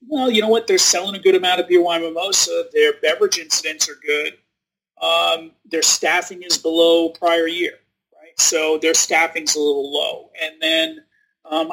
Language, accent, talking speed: English, American, 175 wpm